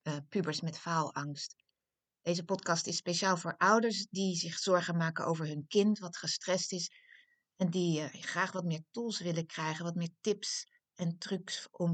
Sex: female